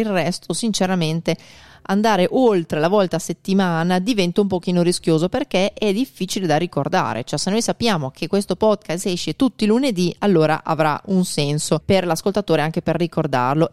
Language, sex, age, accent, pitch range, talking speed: Italian, female, 30-49, native, 155-195 Hz, 165 wpm